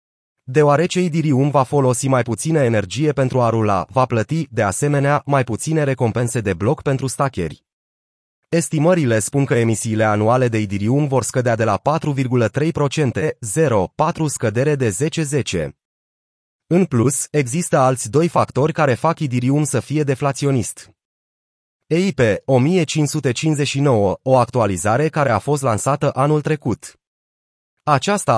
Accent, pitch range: native, 120-150 Hz